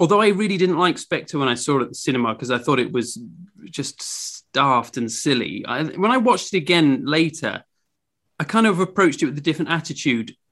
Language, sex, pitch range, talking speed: English, male, 125-175 Hz, 215 wpm